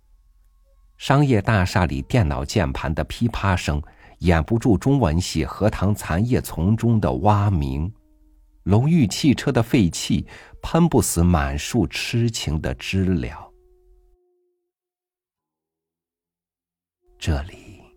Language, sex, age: Chinese, male, 50-69